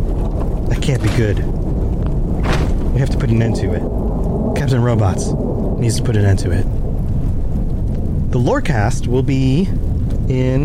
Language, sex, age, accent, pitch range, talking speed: English, male, 30-49, American, 95-130 Hz, 145 wpm